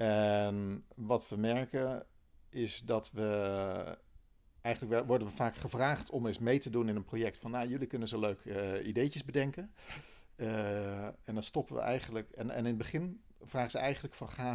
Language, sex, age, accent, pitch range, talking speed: Dutch, male, 50-69, Dutch, 105-125 Hz, 185 wpm